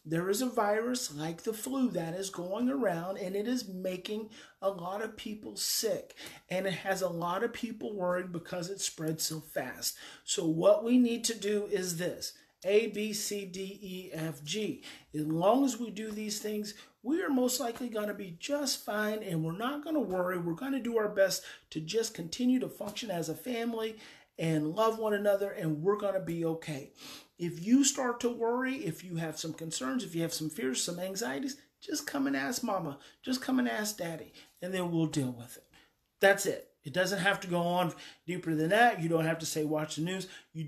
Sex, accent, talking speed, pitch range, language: male, American, 210 wpm, 160-230 Hz, English